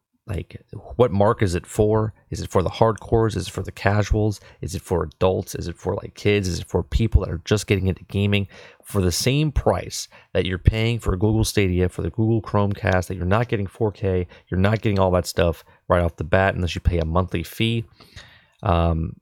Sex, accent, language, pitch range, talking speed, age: male, American, English, 90-110 Hz, 220 wpm, 30-49